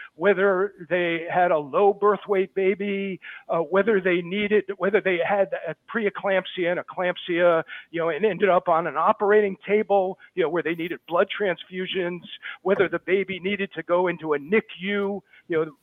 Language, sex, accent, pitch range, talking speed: English, male, American, 170-220 Hz, 175 wpm